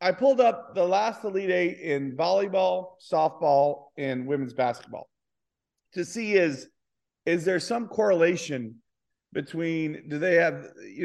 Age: 40-59